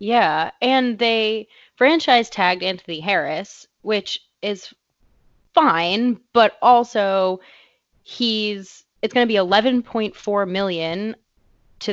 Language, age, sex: English, 20-39, female